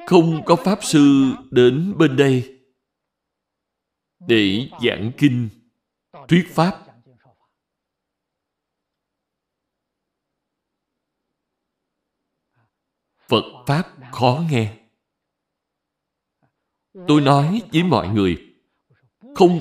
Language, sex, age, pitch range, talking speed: Vietnamese, male, 60-79, 130-175 Hz, 65 wpm